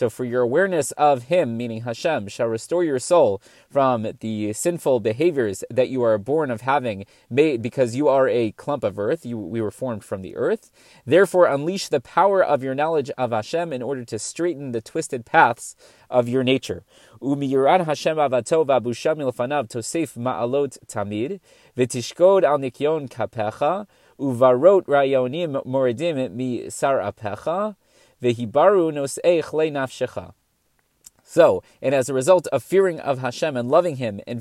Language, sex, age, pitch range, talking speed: English, male, 30-49, 120-155 Hz, 130 wpm